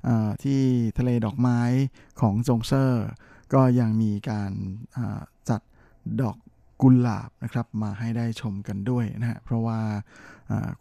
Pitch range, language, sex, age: 110-130 Hz, Thai, male, 20-39